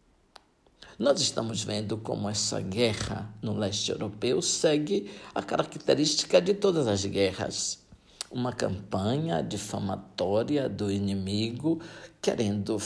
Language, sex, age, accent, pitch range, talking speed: Portuguese, male, 60-79, Brazilian, 100-140 Hz, 105 wpm